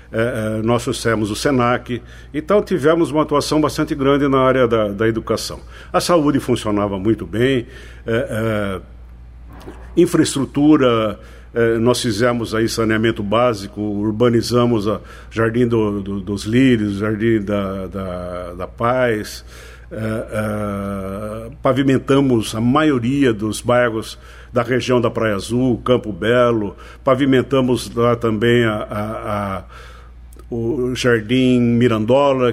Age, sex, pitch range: 60-79, male, 105-125 Hz